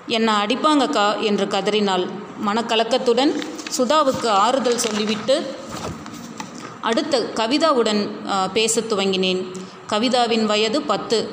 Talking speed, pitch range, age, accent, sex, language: 80 wpm, 205-250 Hz, 30-49, native, female, Tamil